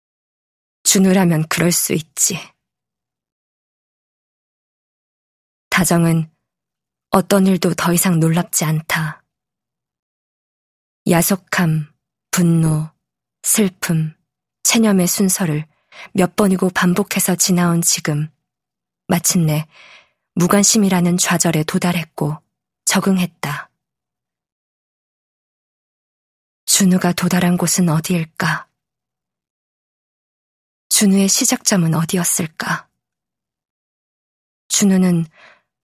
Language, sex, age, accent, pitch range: Korean, female, 20-39, native, 165-195 Hz